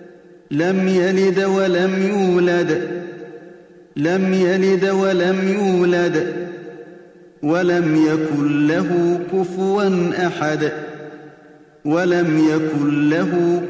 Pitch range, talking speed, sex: 155-180 Hz, 70 wpm, male